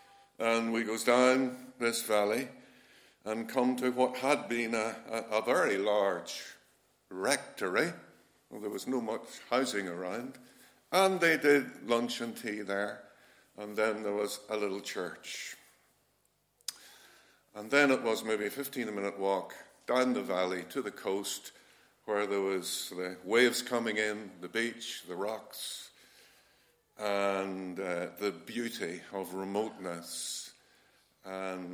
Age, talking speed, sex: 60-79, 130 wpm, male